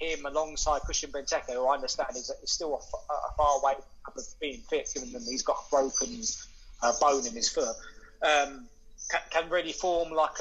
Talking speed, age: 200 wpm, 20-39